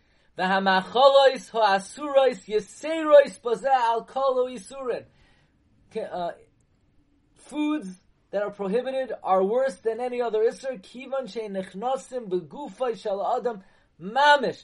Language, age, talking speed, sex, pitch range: English, 30-49, 45 wpm, male, 200-255 Hz